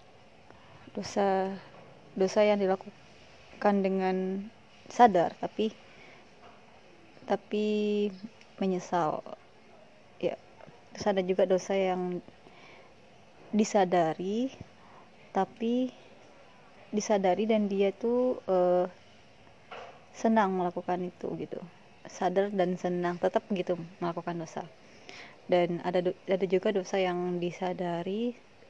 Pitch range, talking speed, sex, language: 180-200 Hz, 85 wpm, female, Indonesian